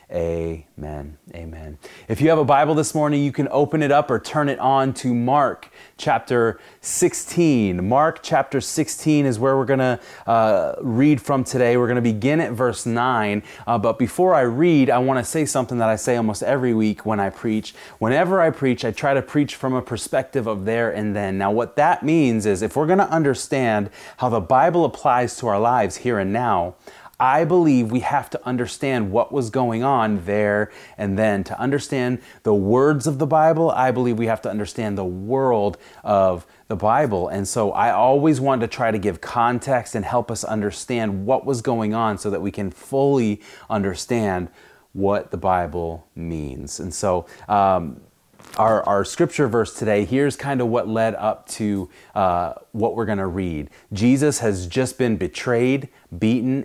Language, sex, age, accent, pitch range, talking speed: English, male, 30-49, American, 105-135 Hz, 190 wpm